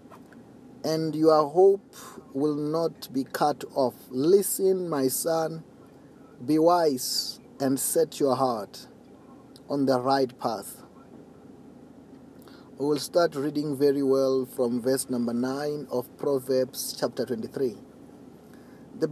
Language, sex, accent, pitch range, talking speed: English, male, South African, 135-200 Hz, 110 wpm